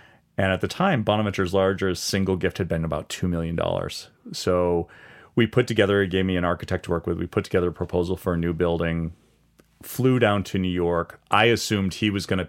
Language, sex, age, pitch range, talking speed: English, male, 40-59, 90-105 Hz, 215 wpm